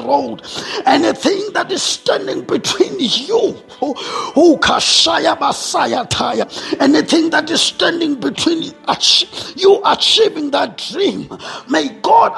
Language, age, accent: English, 50-69, South African